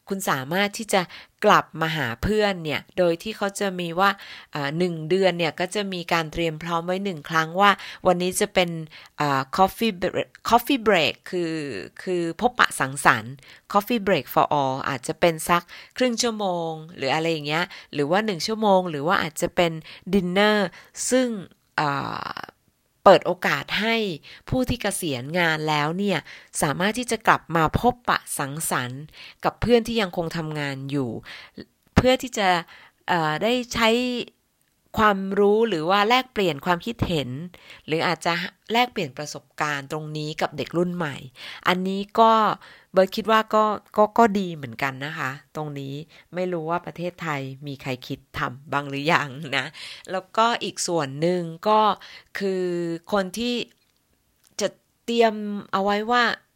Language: English